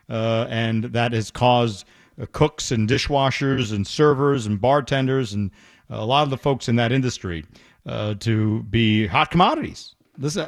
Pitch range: 110-155 Hz